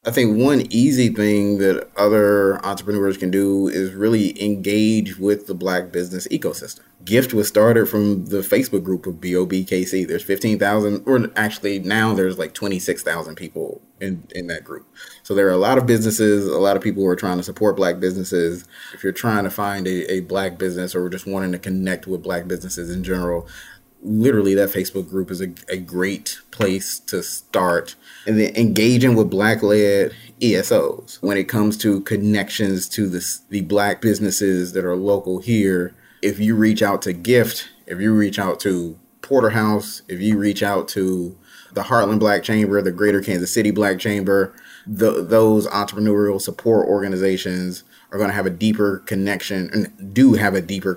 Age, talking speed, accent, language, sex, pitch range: 30-49, 180 wpm, American, English, male, 95-105 Hz